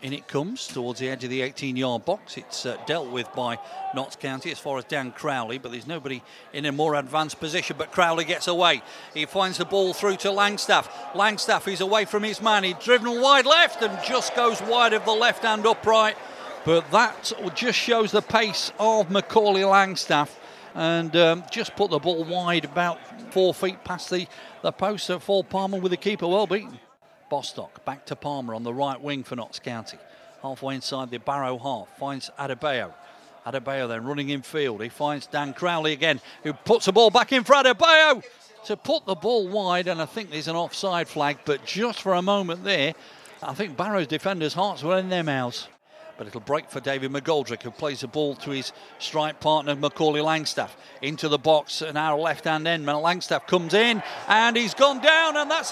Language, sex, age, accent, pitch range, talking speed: English, male, 50-69, British, 150-225 Hz, 200 wpm